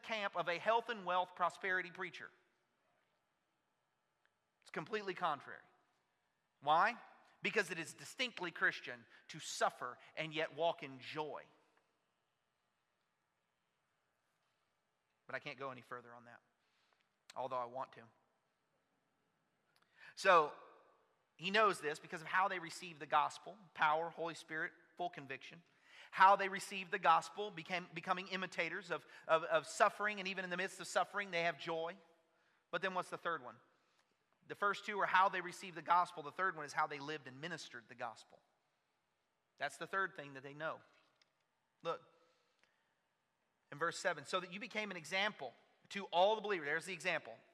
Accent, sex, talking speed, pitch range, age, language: American, male, 155 wpm, 150-190 Hz, 30-49, English